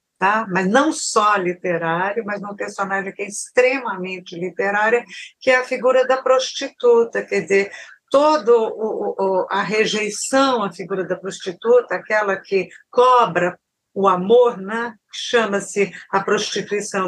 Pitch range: 185-240 Hz